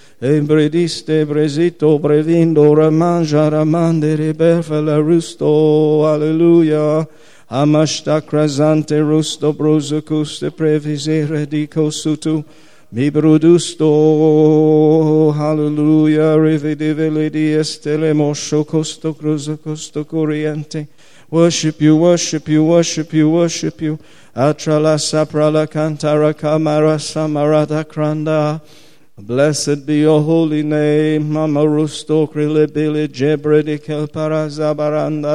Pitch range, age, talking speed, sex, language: 150-155 Hz, 50-69, 75 wpm, male, English